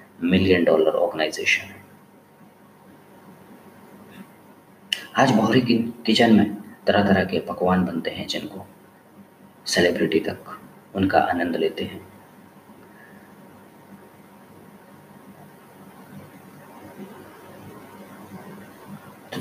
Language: Hindi